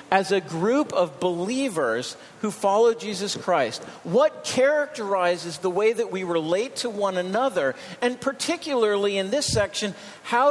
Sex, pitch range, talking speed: male, 195-245 Hz, 145 wpm